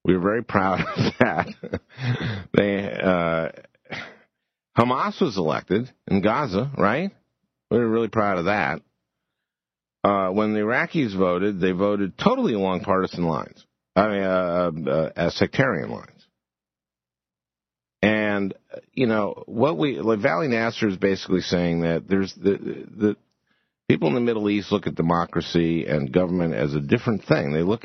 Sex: male